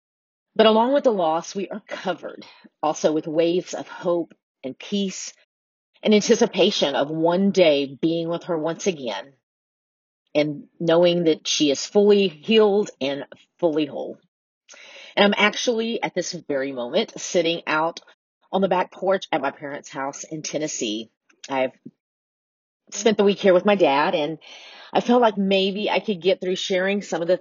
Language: English